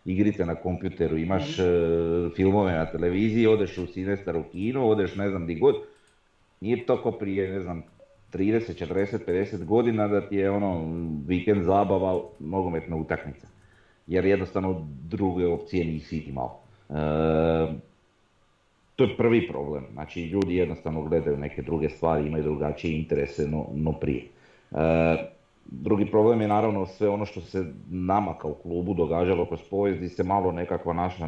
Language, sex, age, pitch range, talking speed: Croatian, male, 40-59, 80-100 Hz, 150 wpm